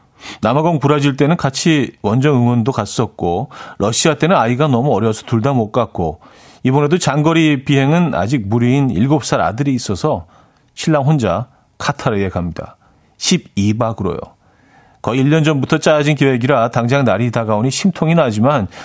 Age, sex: 40-59, male